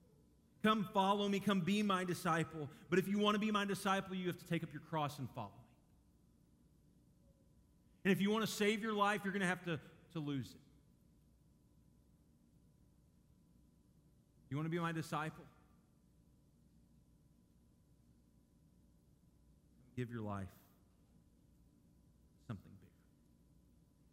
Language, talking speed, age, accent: English, 130 wpm, 40-59, American